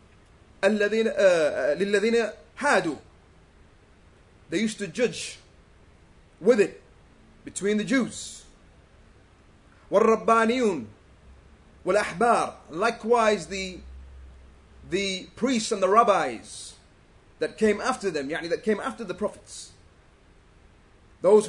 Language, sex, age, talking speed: English, male, 30-49, 80 wpm